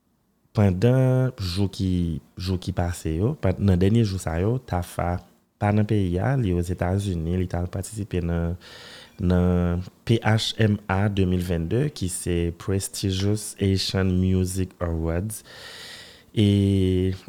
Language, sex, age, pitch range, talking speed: French, male, 30-49, 85-105 Hz, 95 wpm